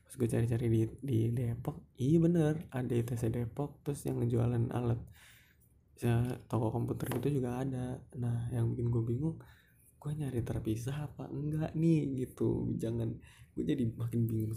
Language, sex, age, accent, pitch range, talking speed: Indonesian, male, 20-39, native, 115-130 Hz, 155 wpm